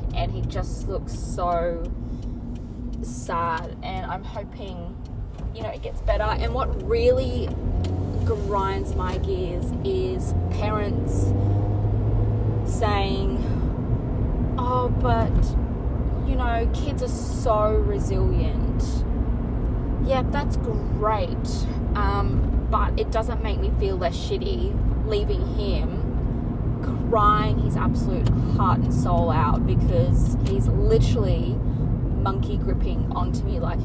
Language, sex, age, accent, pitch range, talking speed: English, female, 20-39, Australian, 100-130 Hz, 105 wpm